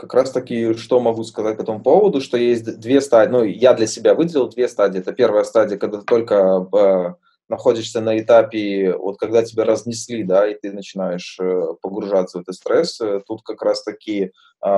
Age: 20-39